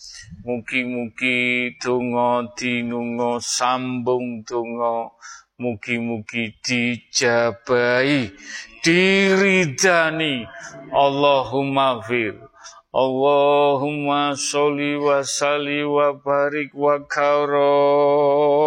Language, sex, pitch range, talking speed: Indonesian, male, 125-145 Hz, 55 wpm